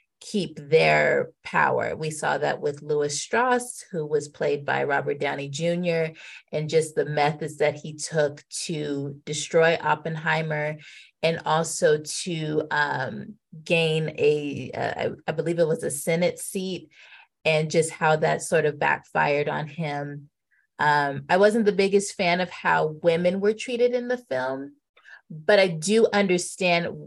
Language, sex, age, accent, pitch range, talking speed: English, female, 30-49, American, 150-200 Hz, 150 wpm